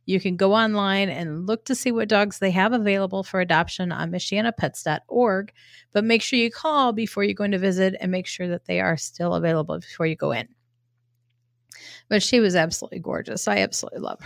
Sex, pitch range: female, 170-220 Hz